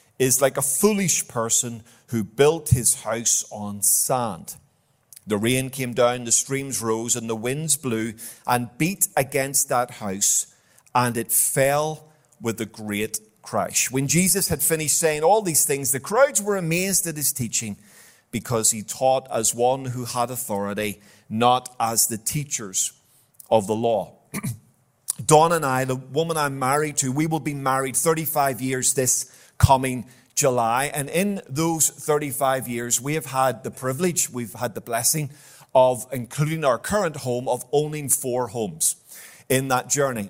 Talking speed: 160 wpm